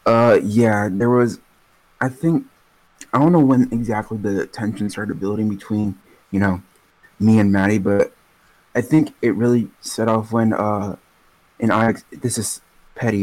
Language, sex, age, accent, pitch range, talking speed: English, male, 20-39, American, 100-115 Hz, 160 wpm